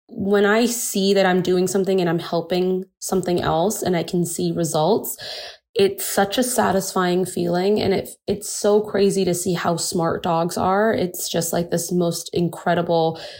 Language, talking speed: English, 175 wpm